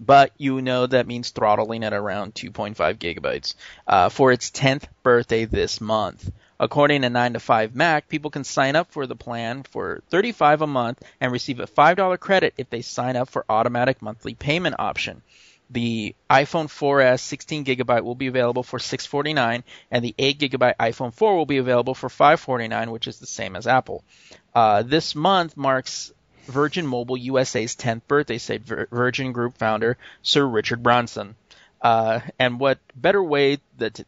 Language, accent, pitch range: English, American, 115-135 Hz